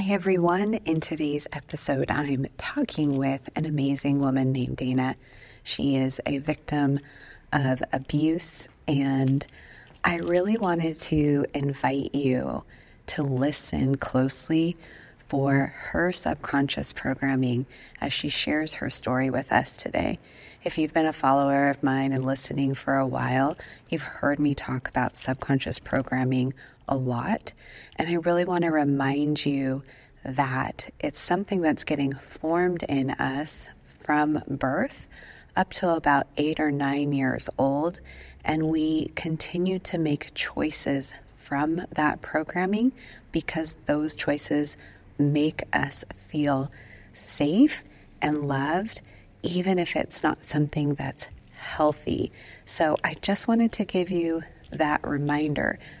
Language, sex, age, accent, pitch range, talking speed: English, female, 30-49, American, 135-160 Hz, 130 wpm